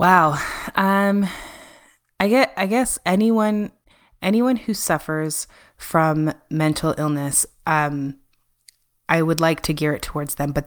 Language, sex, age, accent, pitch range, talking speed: English, female, 20-39, American, 145-180 Hz, 130 wpm